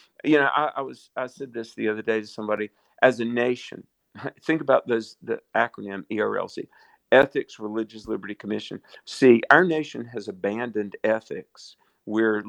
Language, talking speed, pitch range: English, 160 wpm, 100-115 Hz